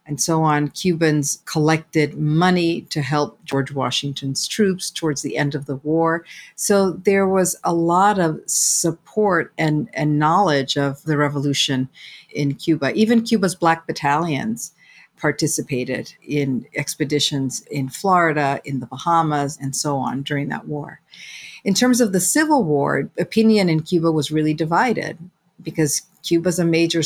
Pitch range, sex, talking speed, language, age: 145-175 Hz, female, 145 wpm, English, 50-69